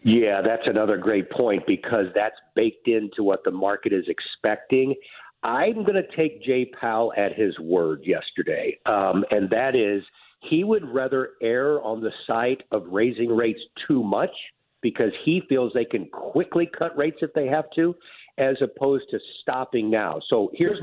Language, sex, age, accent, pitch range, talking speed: English, male, 50-69, American, 115-155 Hz, 170 wpm